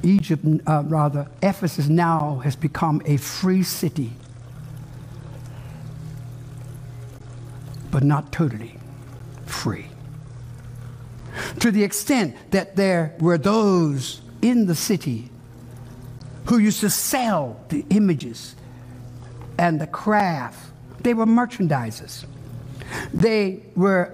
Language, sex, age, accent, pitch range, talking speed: English, male, 60-79, American, 130-190 Hz, 95 wpm